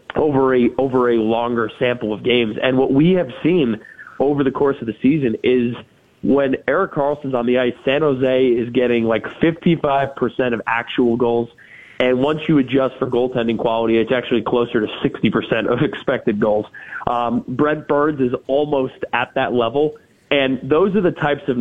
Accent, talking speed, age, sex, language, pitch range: American, 180 wpm, 30-49, male, English, 125-145 Hz